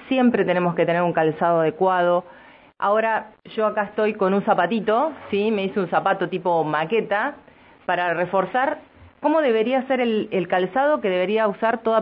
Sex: female